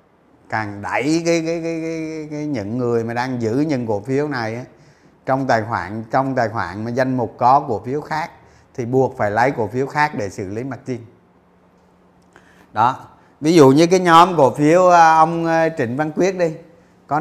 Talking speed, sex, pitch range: 190 wpm, male, 140-175 Hz